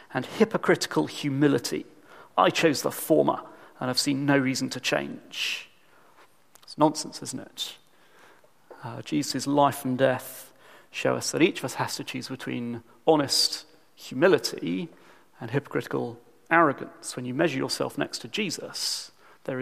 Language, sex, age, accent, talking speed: English, male, 40-59, British, 140 wpm